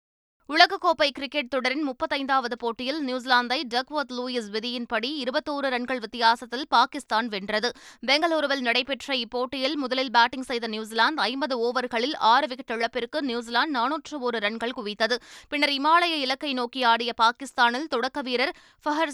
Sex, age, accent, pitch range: female, 20-39, native, 235-280 Hz